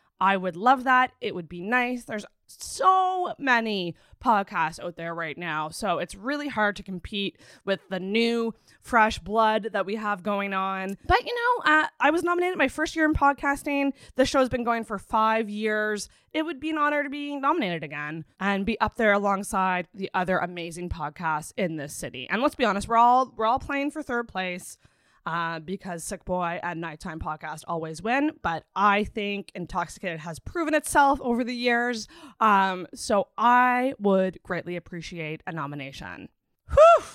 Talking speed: 180 wpm